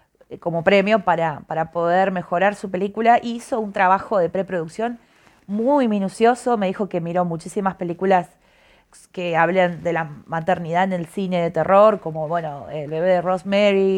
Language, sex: Spanish, female